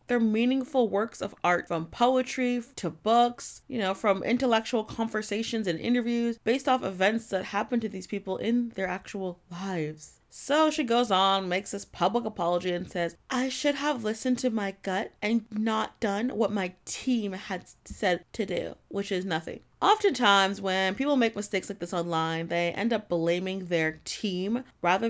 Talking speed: 175 wpm